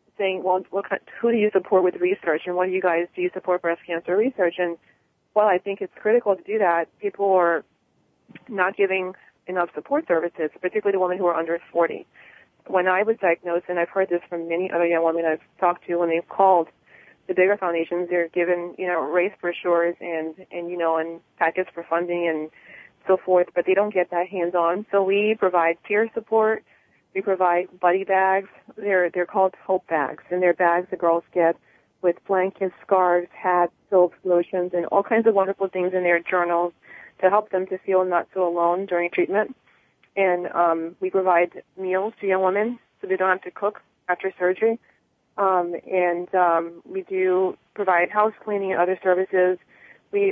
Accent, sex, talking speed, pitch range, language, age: American, female, 195 wpm, 175-195 Hz, English, 30-49